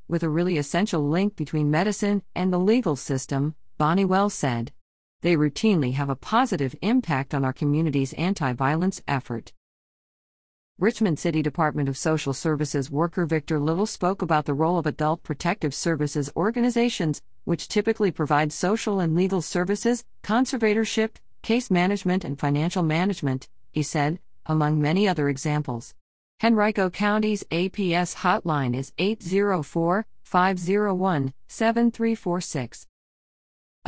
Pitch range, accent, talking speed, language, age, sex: 150-200 Hz, American, 120 wpm, English, 50-69, female